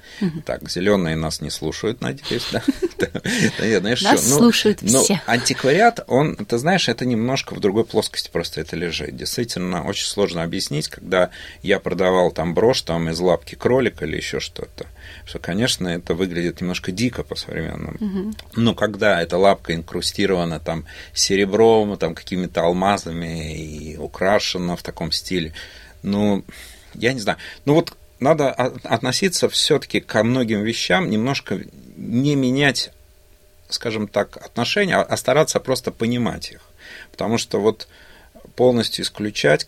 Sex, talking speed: male, 130 wpm